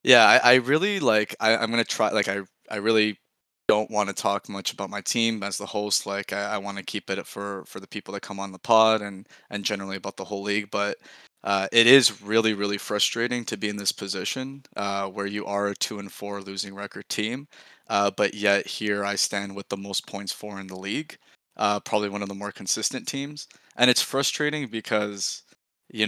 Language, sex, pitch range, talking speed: English, male, 100-110 Hz, 225 wpm